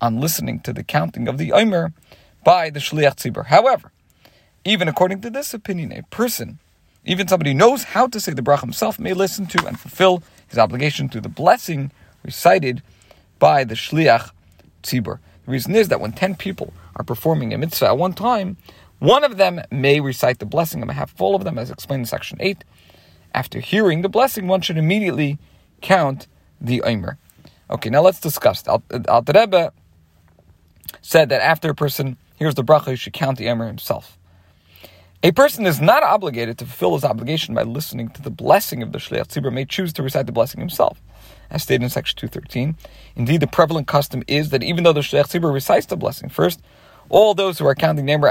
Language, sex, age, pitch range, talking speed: English, male, 40-59, 120-180 Hz, 195 wpm